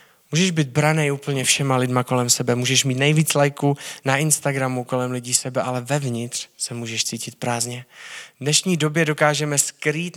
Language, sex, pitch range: Czech, male, 125-150 Hz